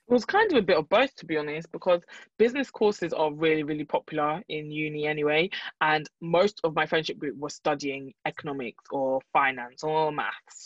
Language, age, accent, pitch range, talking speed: English, 20-39, British, 150-185 Hz, 190 wpm